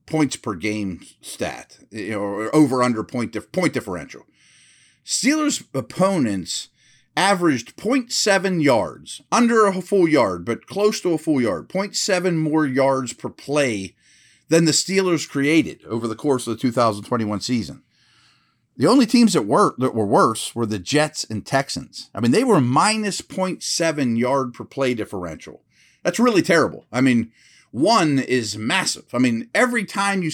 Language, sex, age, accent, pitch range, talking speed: English, male, 40-59, American, 120-175 Hz, 160 wpm